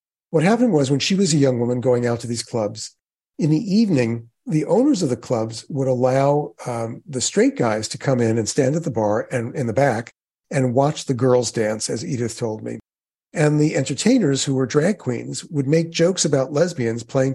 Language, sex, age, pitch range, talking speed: English, male, 50-69, 120-160 Hz, 215 wpm